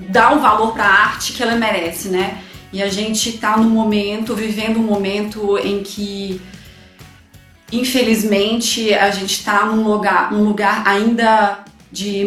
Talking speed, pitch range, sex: 150 wpm, 195-220 Hz, female